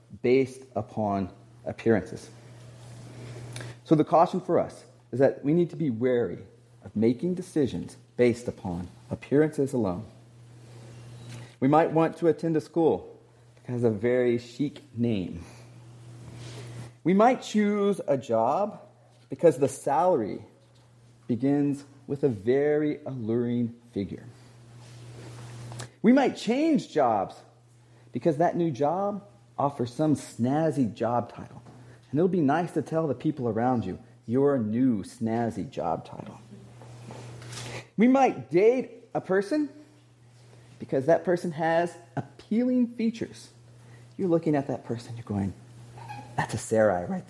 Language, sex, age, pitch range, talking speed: English, male, 40-59, 120-160 Hz, 125 wpm